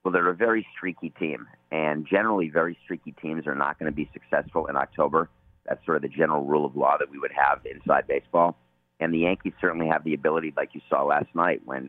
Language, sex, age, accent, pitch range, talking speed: English, male, 40-59, American, 65-85 Hz, 230 wpm